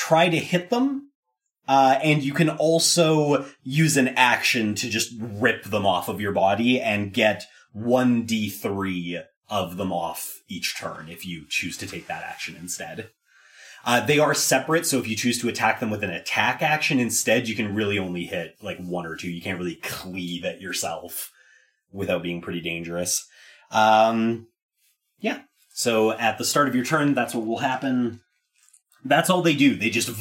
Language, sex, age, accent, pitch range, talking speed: English, male, 30-49, American, 105-160 Hz, 180 wpm